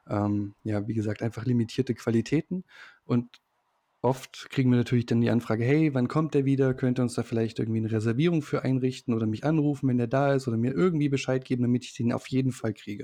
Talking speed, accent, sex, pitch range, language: 225 wpm, German, male, 115-130 Hz, German